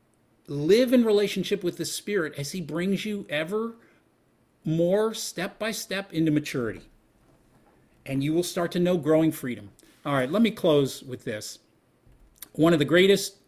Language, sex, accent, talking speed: English, male, American, 150 wpm